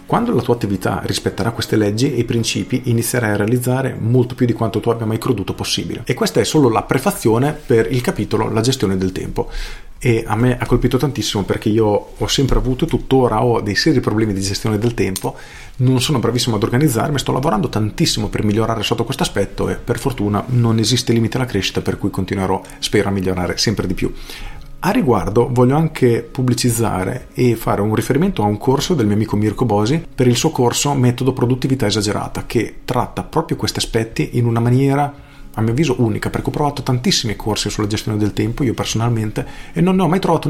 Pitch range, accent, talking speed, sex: 105-130 Hz, native, 205 wpm, male